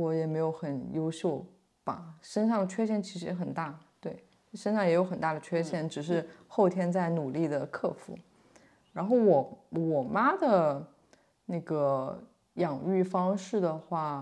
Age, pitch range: 20-39, 150-195 Hz